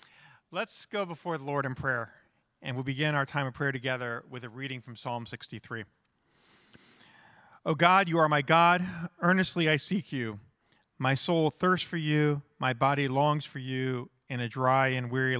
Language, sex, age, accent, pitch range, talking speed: English, male, 40-59, American, 125-165 Hz, 180 wpm